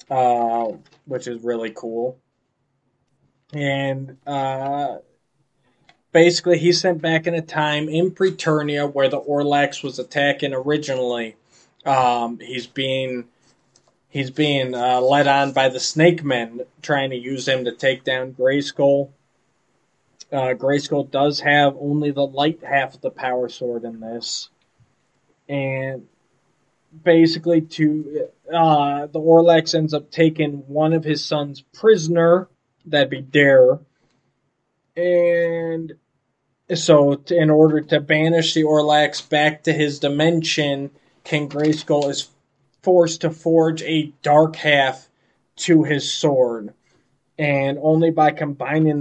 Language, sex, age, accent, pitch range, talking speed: English, male, 20-39, American, 130-155 Hz, 125 wpm